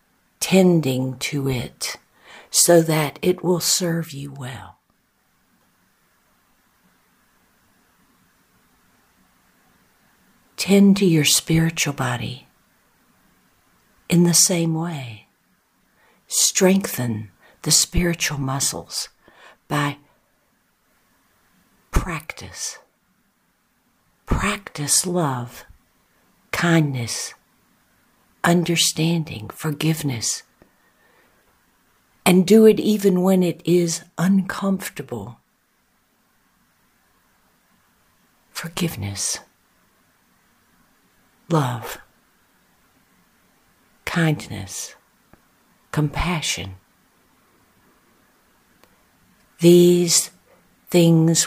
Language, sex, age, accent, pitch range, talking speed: English, female, 60-79, American, 135-175 Hz, 50 wpm